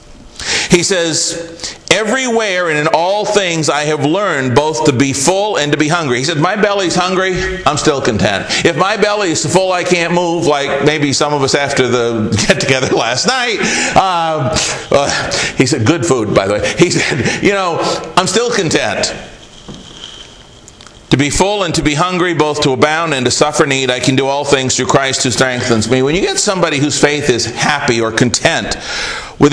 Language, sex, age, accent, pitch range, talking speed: English, male, 50-69, American, 135-180 Hz, 195 wpm